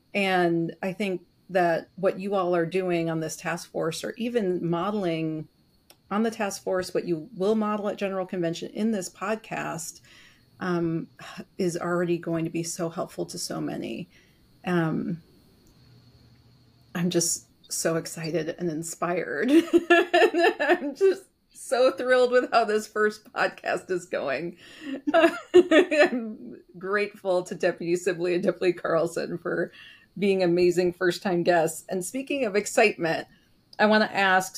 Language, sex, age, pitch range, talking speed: English, female, 40-59, 175-245 Hz, 140 wpm